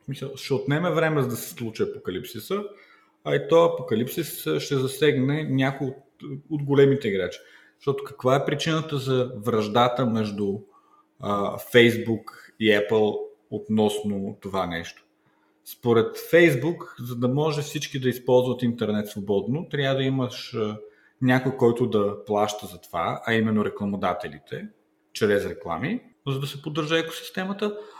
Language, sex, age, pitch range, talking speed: Bulgarian, male, 40-59, 110-165 Hz, 135 wpm